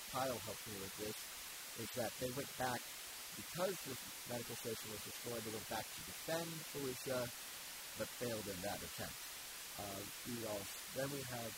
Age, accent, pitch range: 30-49, American, 110-140 Hz